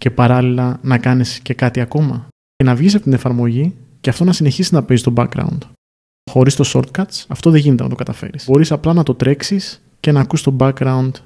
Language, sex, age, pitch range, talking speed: Greek, male, 30-49, 125-140 Hz, 215 wpm